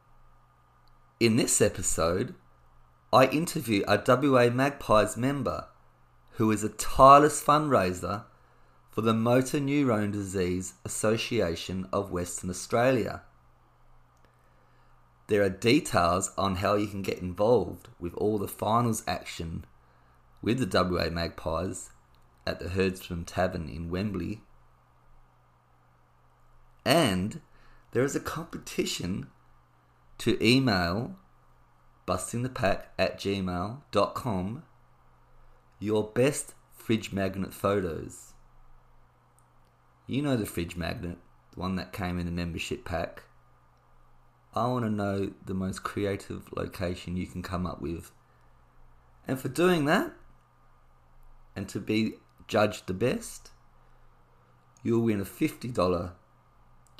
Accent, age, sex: Australian, 30-49, male